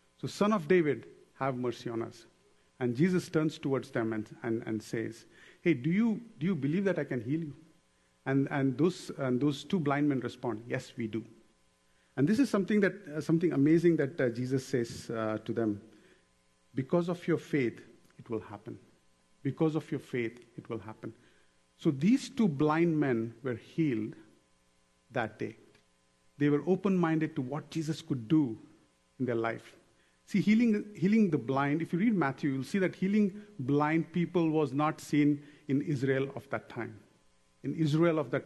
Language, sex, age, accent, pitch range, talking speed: English, male, 50-69, Indian, 115-165 Hz, 180 wpm